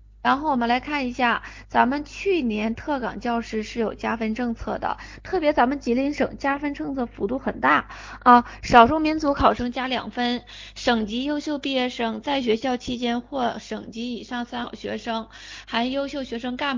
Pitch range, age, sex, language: 220-275 Hz, 20-39, female, Chinese